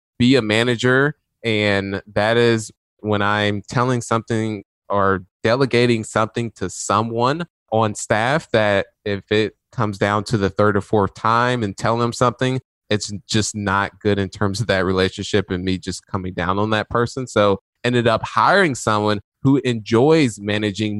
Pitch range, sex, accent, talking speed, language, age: 100-115 Hz, male, American, 165 wpm, English, 20-39